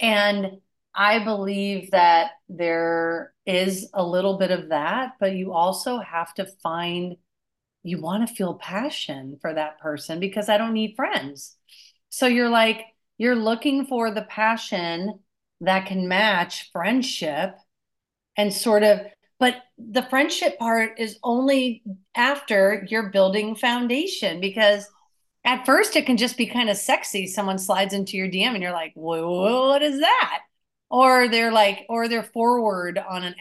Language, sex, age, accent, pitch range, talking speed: English, female, 40-59, American, 185-235 Hz, 150 wpm